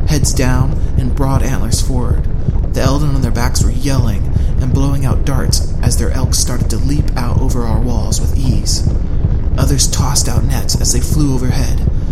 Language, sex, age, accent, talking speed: English, male, 30-49, American, 185 wpm